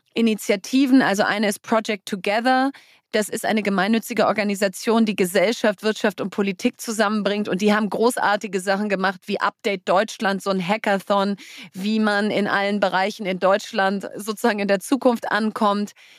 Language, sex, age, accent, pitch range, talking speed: German, female, 30-49, German, 200-230 Hz, 150 wpm